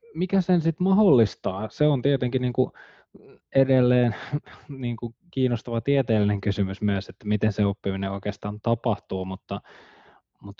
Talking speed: 125 wpm